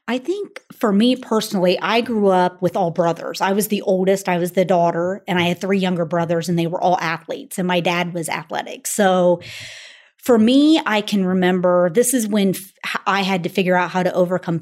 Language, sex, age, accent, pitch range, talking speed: English, female, 30-49, American, 180-225 Hz, 215 wpm